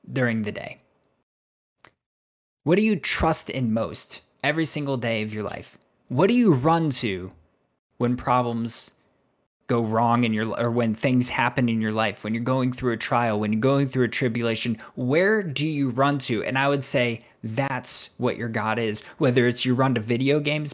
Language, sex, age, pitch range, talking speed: English, male, 20-39, 115-145 Hz, 190 wpm